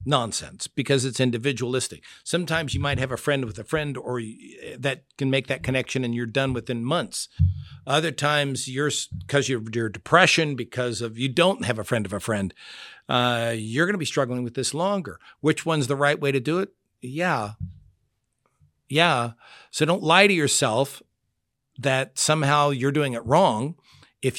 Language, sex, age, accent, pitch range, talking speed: English, male, 50-69, American, 120-150 Hz, 175 wpm